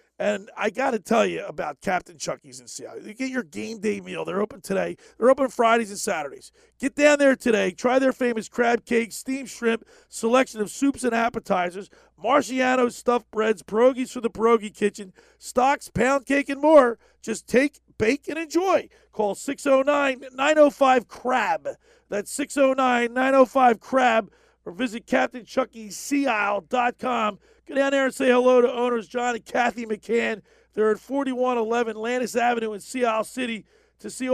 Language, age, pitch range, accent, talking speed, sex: English, 40-59, 225-270 Hz, American, 160 wpm, male